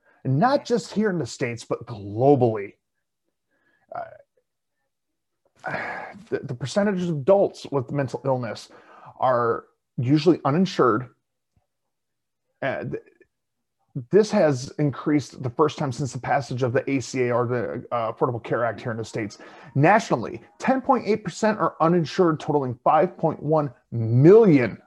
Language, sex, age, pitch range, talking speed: English, male, 30-49, 120-155 Hz, 125 wpm